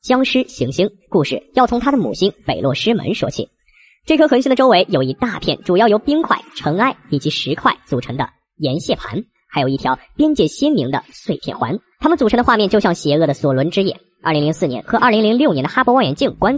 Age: 10-29